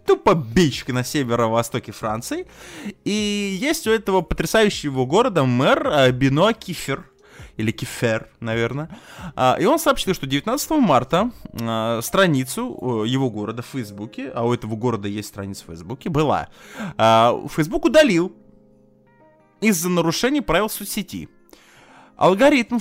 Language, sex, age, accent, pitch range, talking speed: Russian, male, 20-39, native, 120-200 Hz, 115 wpm